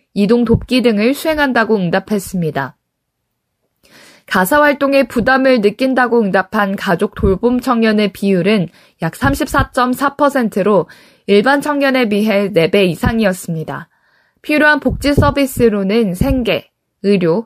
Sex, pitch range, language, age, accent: female, 190-250 Hz, Korean, 20-39, native